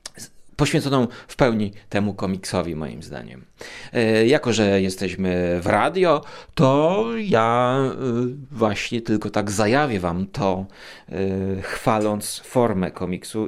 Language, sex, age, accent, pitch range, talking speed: Polish, male, 30-49, native, 100-120 Hz, 100 wpm